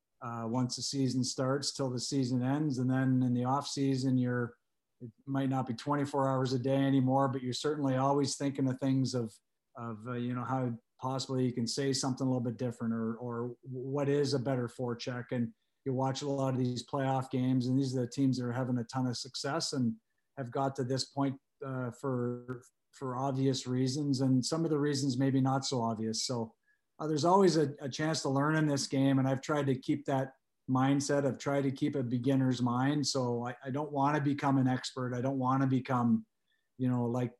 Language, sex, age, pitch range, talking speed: English, male, 40-59, 125-140 Hz, 220 wpm